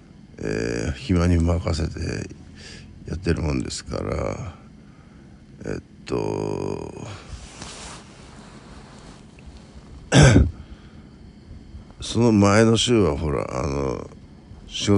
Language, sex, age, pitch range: Japanese, male, 60-79, 70-95 Hz